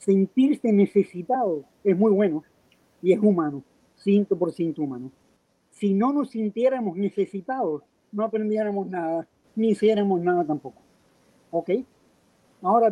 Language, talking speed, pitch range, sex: Spanish, 110 wpm, 175-220 Hz, male